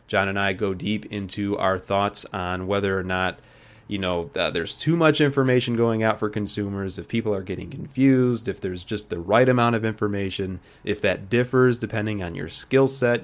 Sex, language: male, English